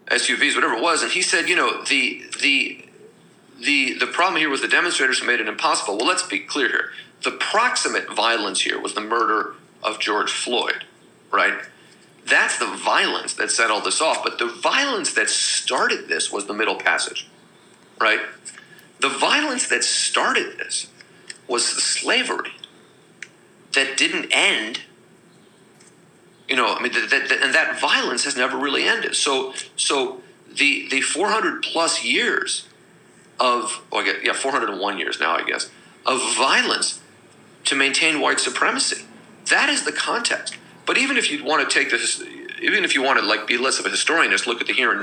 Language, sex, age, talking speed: English, male, 40-59, 175 wpm